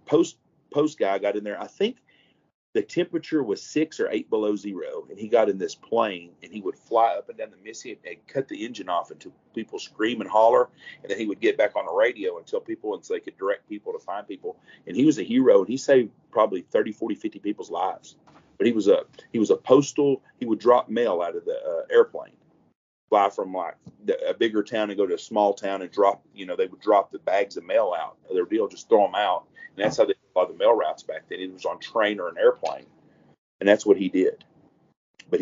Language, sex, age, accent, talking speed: English, male, 40-59, American, 250 wpm